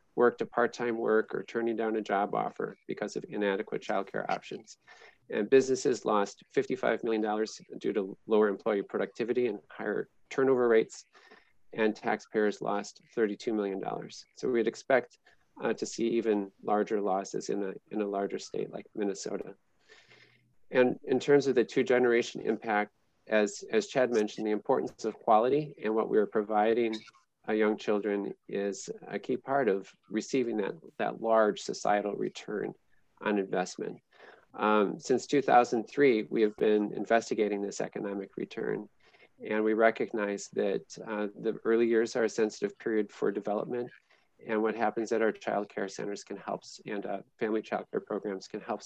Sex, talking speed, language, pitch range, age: male, 160 wpm, English, 105-115 Hz, 40-59